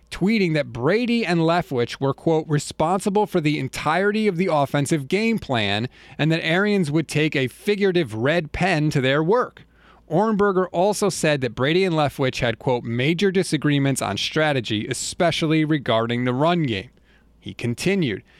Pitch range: 140-185 Hz